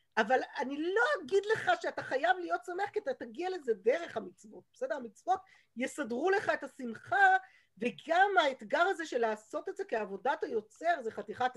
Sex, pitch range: female, 215-345 Hz